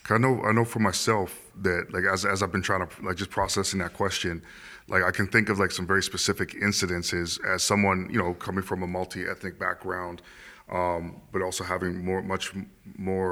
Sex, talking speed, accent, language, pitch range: male, 205 wpm, American, English, 90-100 Hz